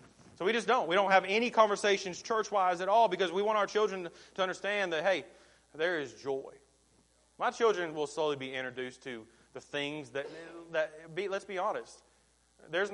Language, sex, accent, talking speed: English, male, American, 185 wpm